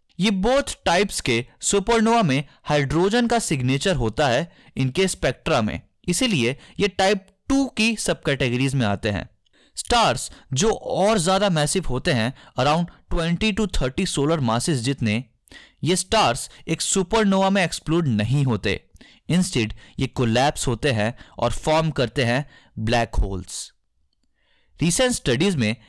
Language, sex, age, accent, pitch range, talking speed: Hindi, male, 20-39, native, 125-195 Hz, 135 wpm